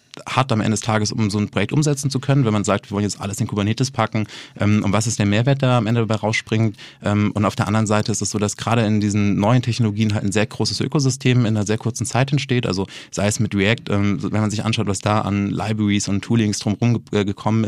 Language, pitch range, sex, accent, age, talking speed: English, 105-115 Hz, male, German, 30-49, 260 wpm